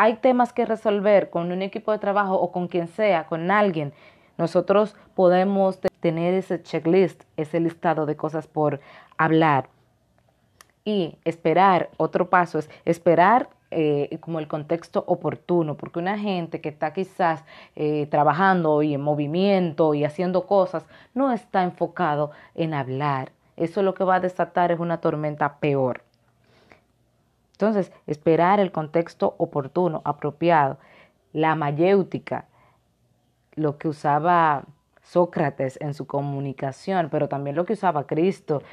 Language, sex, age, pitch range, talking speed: Spanish, female, 30-49, 150-190 Hz, 135 wpm